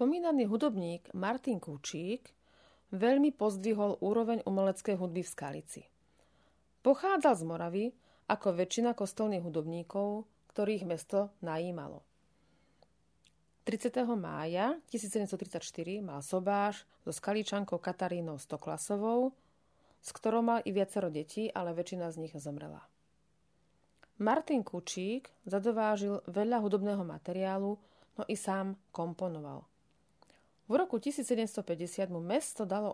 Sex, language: female, Slovak